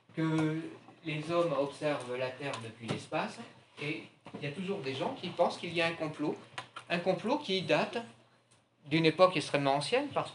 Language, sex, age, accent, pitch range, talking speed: French, male, 50-69, French, 130-175 Hz, 180 wpm